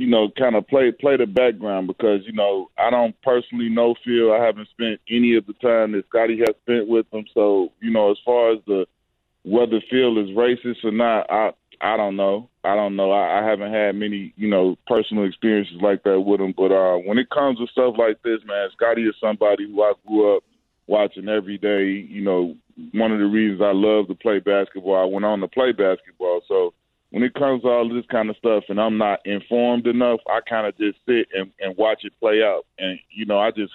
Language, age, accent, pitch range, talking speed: English, 20-39, American, 100-120 Hz, 230 wpm